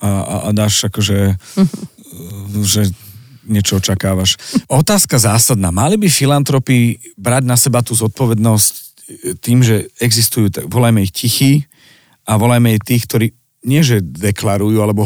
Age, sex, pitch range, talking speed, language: 40-59, male, 105-125 Hz, 125 wpm, Slovak